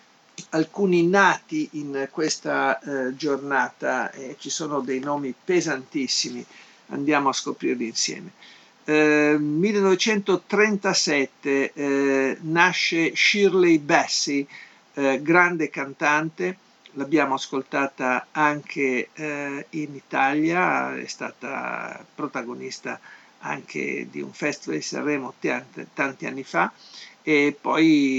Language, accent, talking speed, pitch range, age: Italian, native, 95 wpm, 135-165 Hz, 50-69